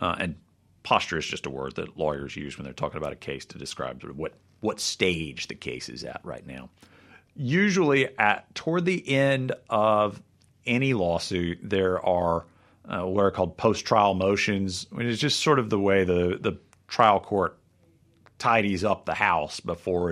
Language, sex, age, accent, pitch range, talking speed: English, male, 50-69, American, 85-115 Hz, 185 wpm